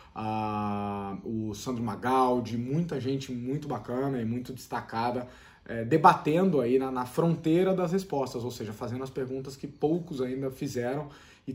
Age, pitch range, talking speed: 20-39, 120-160 Hz, 140 wpm